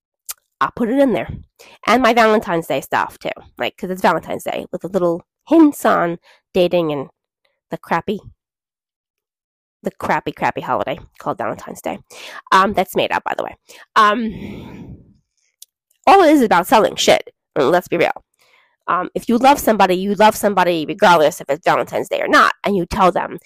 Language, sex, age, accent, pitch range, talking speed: English, female, 20-39, American, 190-310 Hz, 175 wpm